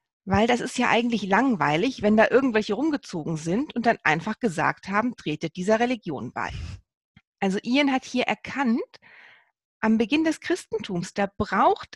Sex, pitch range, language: female, 195-260 Hz, German